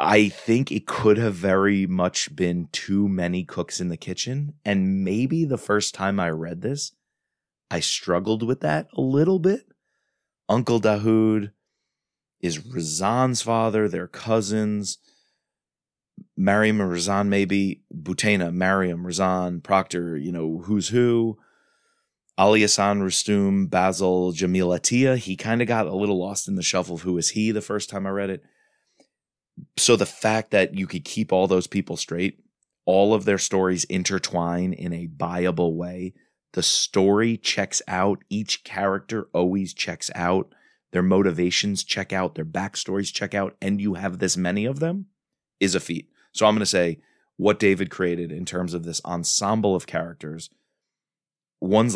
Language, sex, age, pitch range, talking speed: English, male, 30-49, 90-110 Hz, 160 wpm